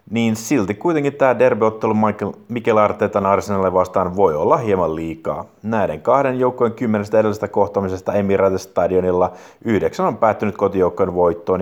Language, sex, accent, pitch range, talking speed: Finnish, male, native, 95-130 Hz, 130 wpm